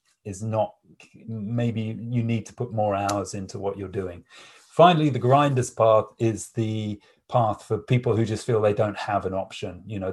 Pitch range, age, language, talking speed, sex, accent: 100-115 Hz, 30-49, English, 190 wpm, male, British